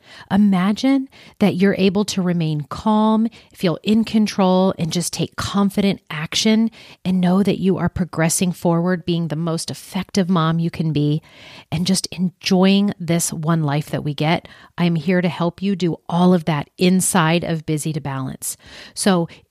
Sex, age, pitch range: female, 40-59, 165-200 Hz